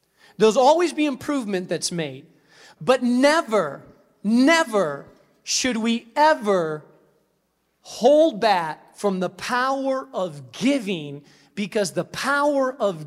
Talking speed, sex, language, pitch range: 105 wpm, male, English, 170-220 Hz